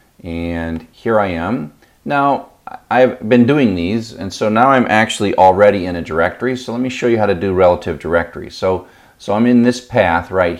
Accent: American